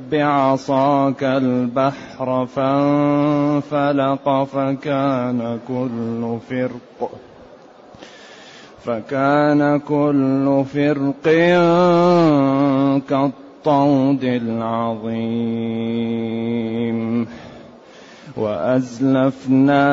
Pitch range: 130-145 Hz